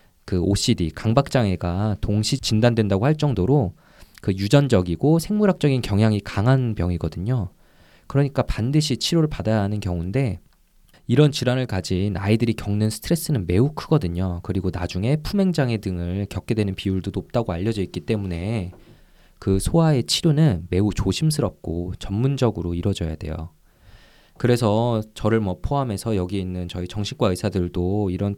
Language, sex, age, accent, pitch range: Korean, male, 20-39, native, 90-130 Hz